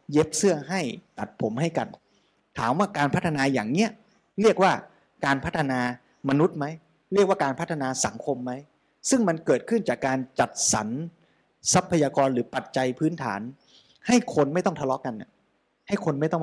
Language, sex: Thai, male